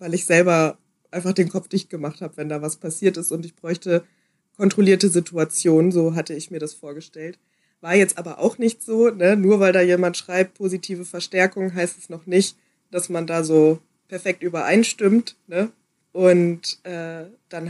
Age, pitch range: 20-39, 175-200 Hz